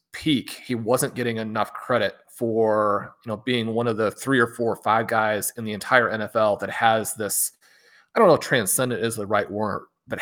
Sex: male